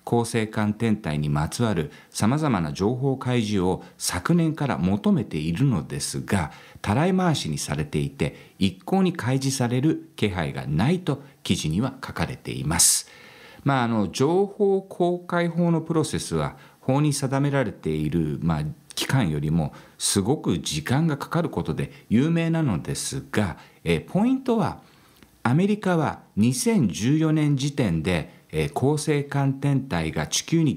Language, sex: Japanese, male